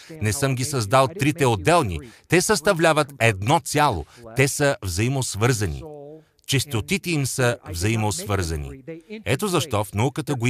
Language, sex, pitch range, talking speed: Russian, male, 120-160 Hz, 125 wpm